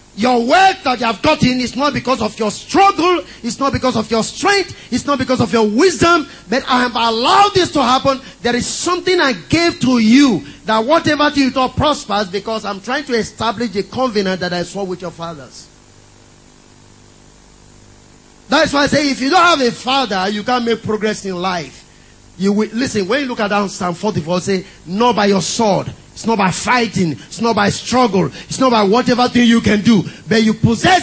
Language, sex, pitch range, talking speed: English, male, 195-270 Hz, 205 wpm